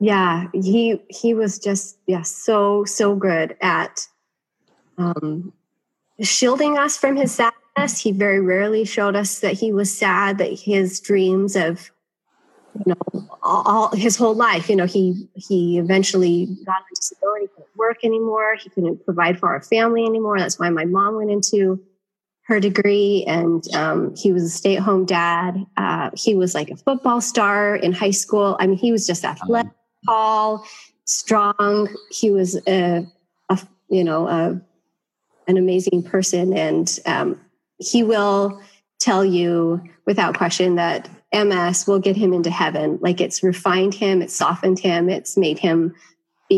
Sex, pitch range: female, 175-205 Hz